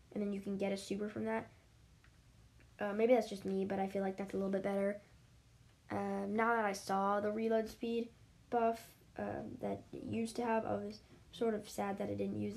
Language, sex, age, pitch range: English, female, 10-29, 190-220 Hz